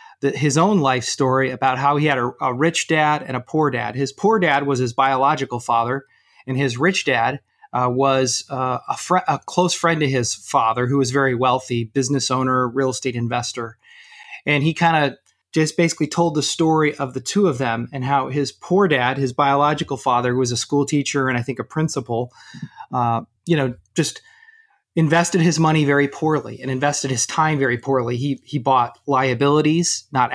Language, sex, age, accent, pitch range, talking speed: English, male, 30-49, American, 130-155 Hz, 195 wpm